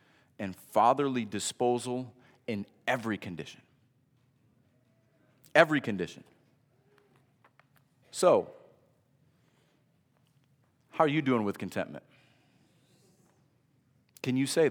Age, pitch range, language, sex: 30-49, 120-160 Hz, English, male